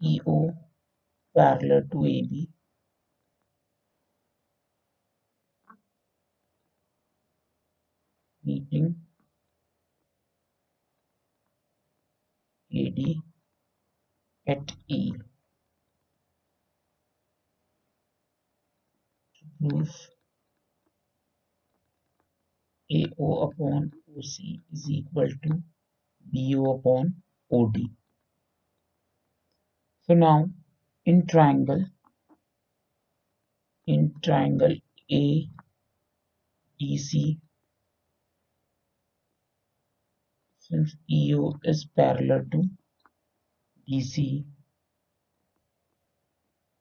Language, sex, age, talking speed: Hindi, male, 60-79, 40 wpm